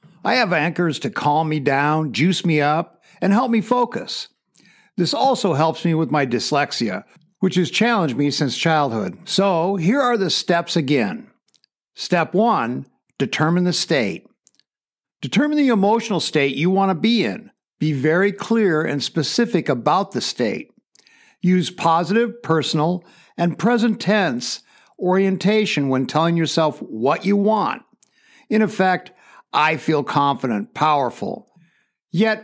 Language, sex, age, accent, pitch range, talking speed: English, male, 60-79, American, 160-215 Hz, 140 wpm